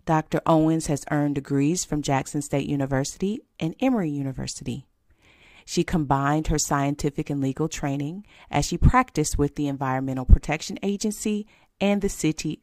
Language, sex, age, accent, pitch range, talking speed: English, female, 40-59, American, 140-175 Hz, 145 wpm